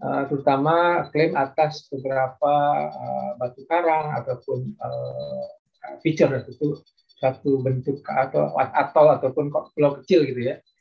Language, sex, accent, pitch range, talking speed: Indonesian, male, native, 135-180 Hz, 115 wpm